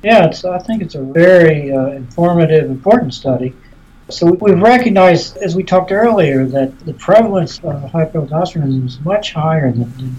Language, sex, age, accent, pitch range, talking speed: English, male, 60-79, American, 130-165 Hz, 160 wpm